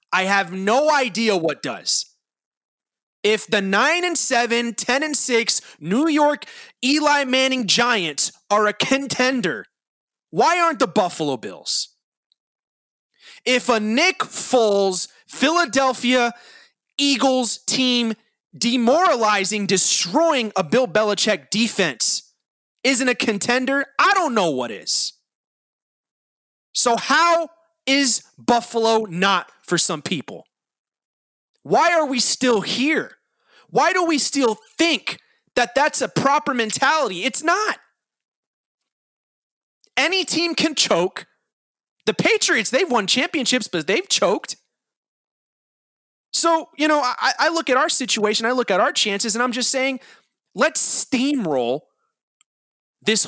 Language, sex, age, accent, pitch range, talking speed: English, male, 30-49, American, 215-295 Hz, 115 wpm